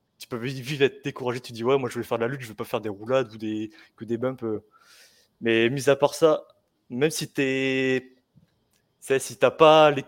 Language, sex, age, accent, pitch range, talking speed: French, male, 20-39, French, 115-135 Hz, 240 wpm